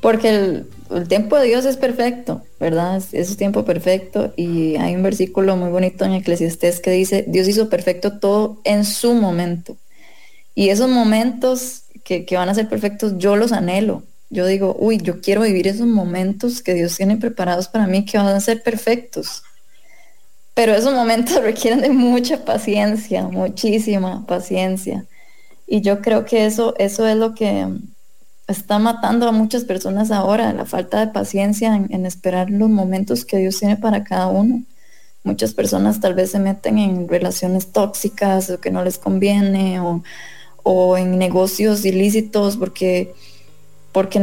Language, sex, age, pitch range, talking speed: English, female, 20-39, 185-220 Hz, 165 wpm